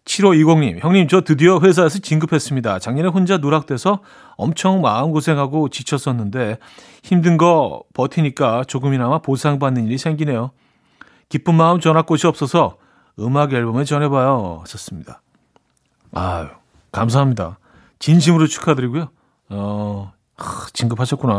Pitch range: 120-160 Hz